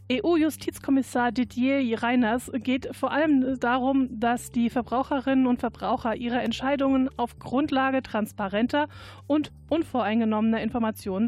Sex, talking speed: female, 105 wpm